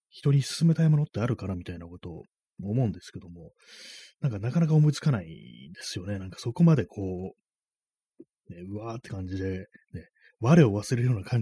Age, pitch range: 30-49, 90-130 Hz